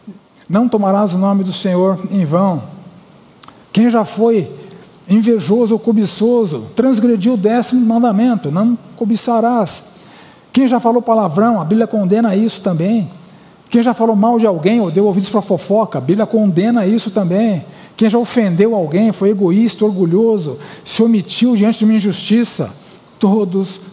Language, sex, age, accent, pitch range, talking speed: Portuguese, male, 60-79, Brazilian, 170-215 Hz, 150 wpm